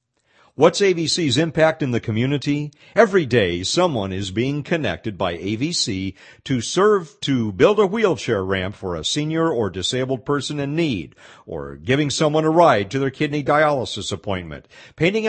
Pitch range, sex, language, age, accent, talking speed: 100-150 Hz, male, English, 50-69, American, 155 wpm